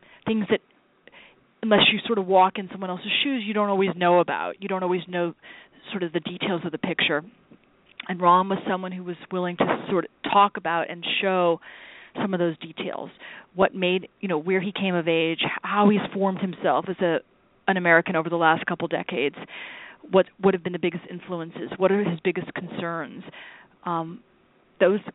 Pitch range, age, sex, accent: 175-205 Hz, 30-49, female, American